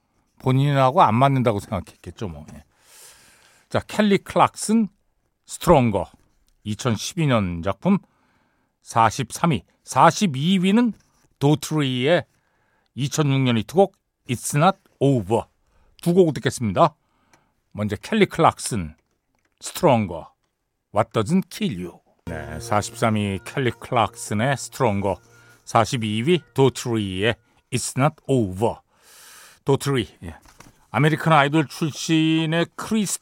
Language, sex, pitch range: Korean, male, 115-175 Hz